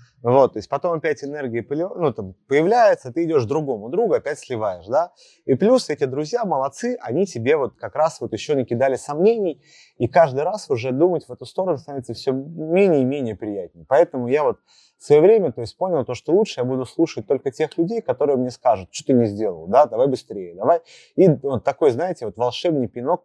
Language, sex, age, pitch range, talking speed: Russian, male, 30-49, 125-180 Hz, 200 wpm